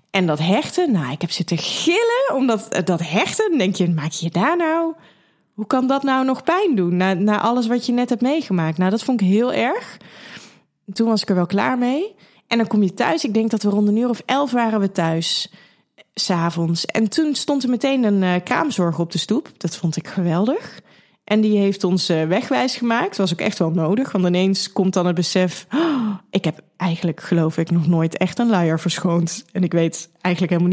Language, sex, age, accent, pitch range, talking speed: Dutch, female, 20-39, Dutch, 175-225 Hz, 225 wpm